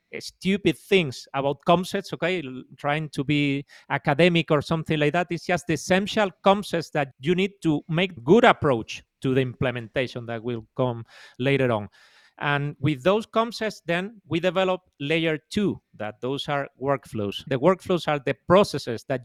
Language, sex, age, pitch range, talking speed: English, male, 40-59, 135-180 Hz, 160 wpm